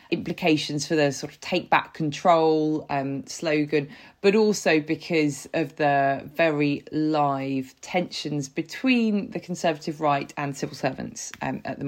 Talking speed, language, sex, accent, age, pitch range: 140 wpm, English, female, British, 20-39, 140-170 Hz